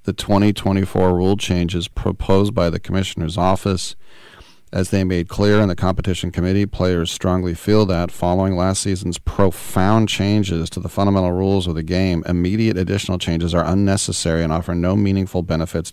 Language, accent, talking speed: English, American, 160 wpm